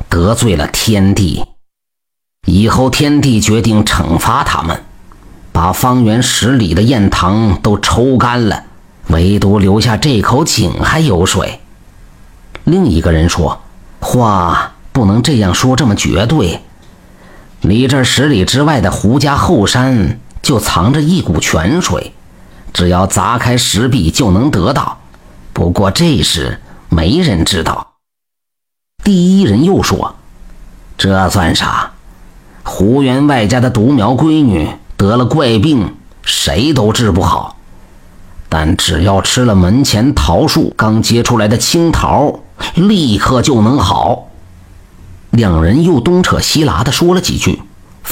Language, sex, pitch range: Chinese, male, 90-130 Hz